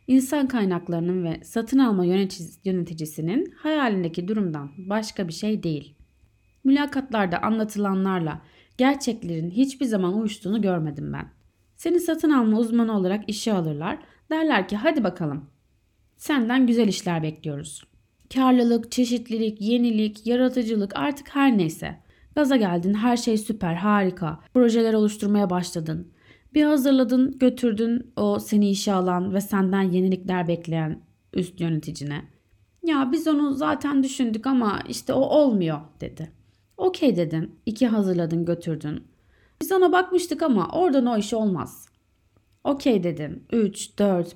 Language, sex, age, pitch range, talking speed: Turkish, female, 30-49, 170-255 Hz, 125 wpm